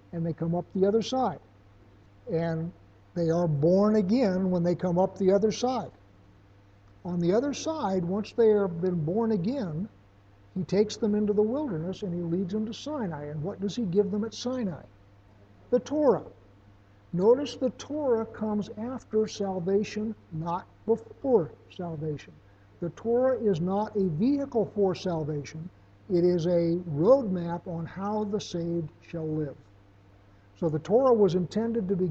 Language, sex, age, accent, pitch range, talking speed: English, male, 60-79, American, 140-205 Hz, 160 wpm